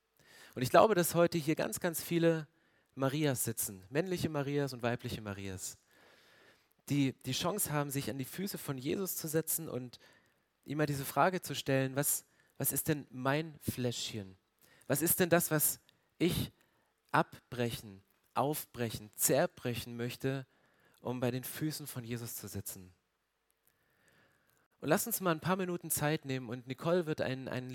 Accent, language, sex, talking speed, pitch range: German, German, male, 155 wpm, 125-160 Hz